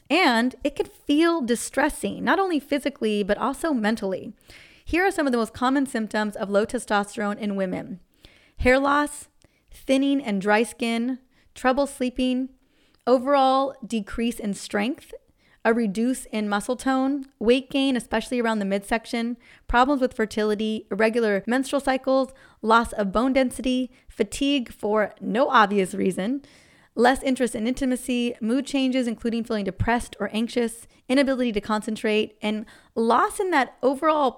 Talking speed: 140 wpm